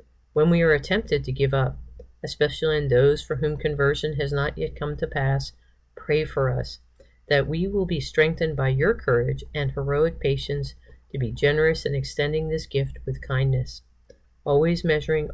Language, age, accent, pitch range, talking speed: English, 40-59, American, 125-155 Hz, 170 wpm